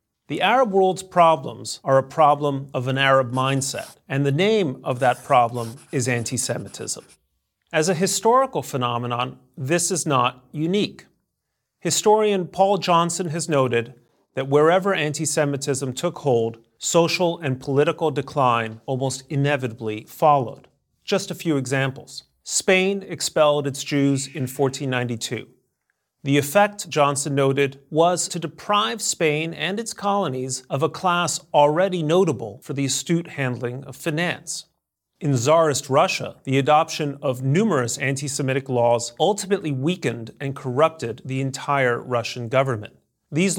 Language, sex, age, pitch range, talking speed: English, male, 40-59, 130-165 Hz, 130 wpm